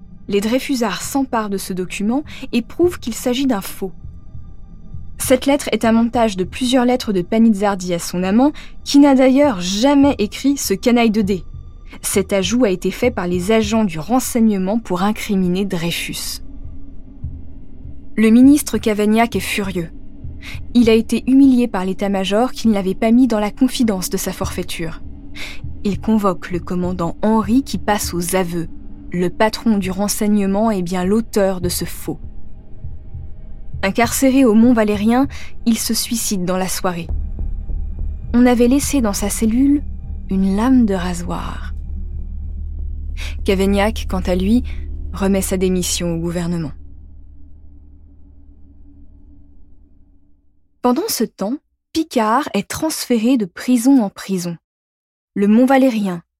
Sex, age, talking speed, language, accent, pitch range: female, 20-39, 135 wpm, French, French, 160-235 Hz